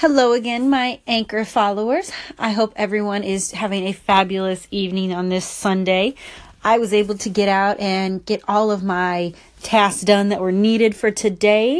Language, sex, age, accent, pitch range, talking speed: English, female, 30-49, American, 205-260 Hz, 175 wpm